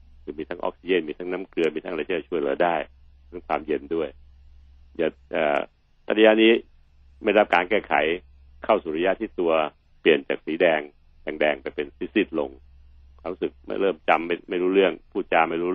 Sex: male